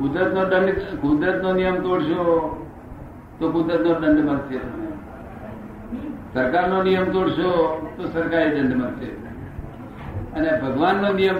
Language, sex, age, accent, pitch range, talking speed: Gujarati, male, 60-79, native, 130-185 Hz, 110 wpm